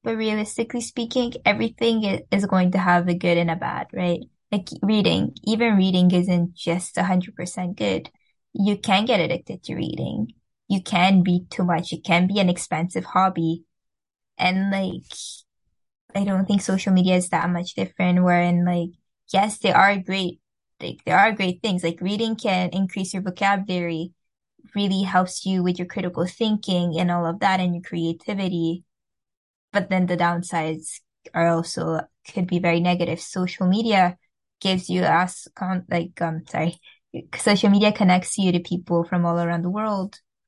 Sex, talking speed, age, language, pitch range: female, 165 wpm, 10-29, English, 175-200 Hz